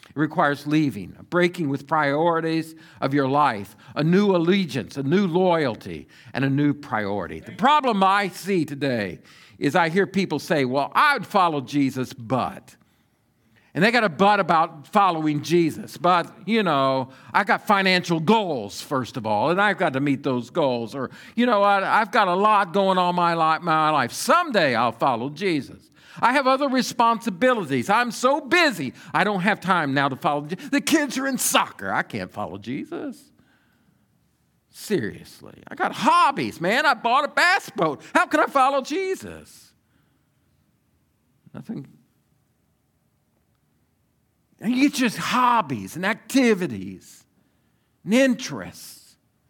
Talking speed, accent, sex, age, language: 150 wpm, American, male, 50-69, English